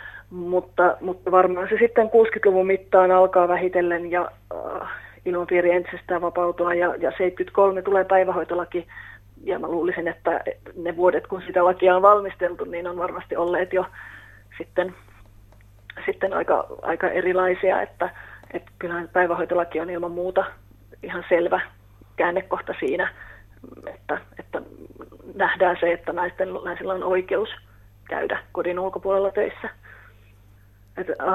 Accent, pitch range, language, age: native, 170-190 Hz, Finnish, 30-49